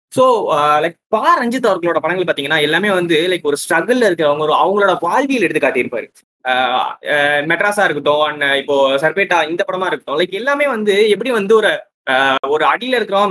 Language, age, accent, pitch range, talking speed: Tamil, 20-39, native, 165-250 Hz, 160 wpm